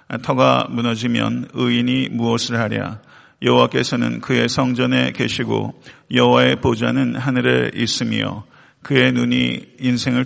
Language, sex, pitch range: Korean, male, 80-130 Hz